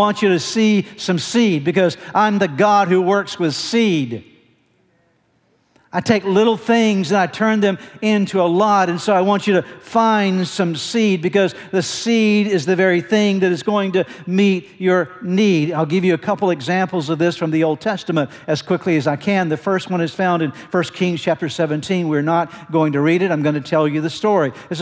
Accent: American